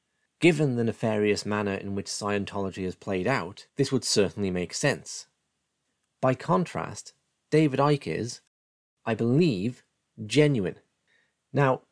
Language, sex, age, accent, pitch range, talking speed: English, male, 30-49, British, 100-130 Hz, 120 wpm